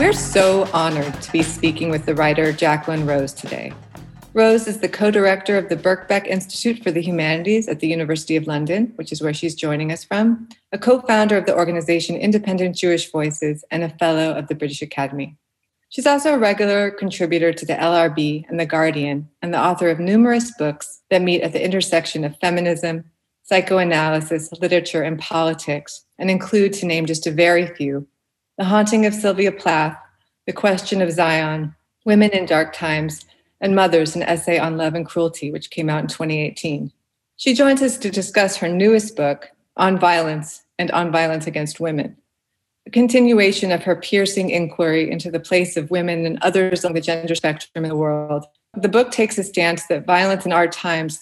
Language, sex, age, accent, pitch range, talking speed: English, female, 30-49, American, 160-195 Hz, 185 wpm